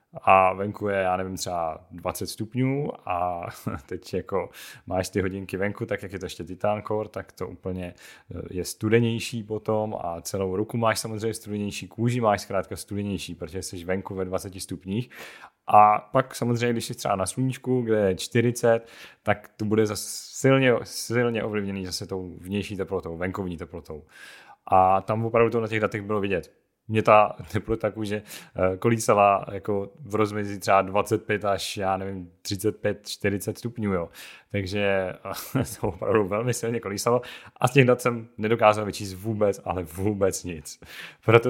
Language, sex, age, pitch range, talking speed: Czech, male, 30-49, 95-110 Hz, 160 wpm